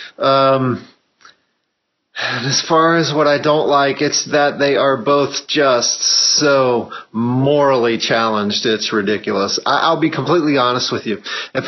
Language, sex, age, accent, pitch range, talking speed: English, male, 40-59, American, 125-160 Hz, 145 wpm